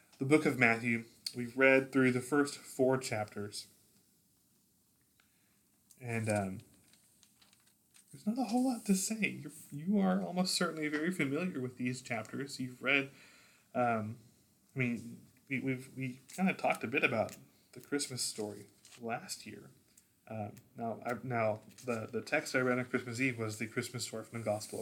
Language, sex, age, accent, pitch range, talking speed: English, male, 20-39, American, 115-135 Hz, 160 wpm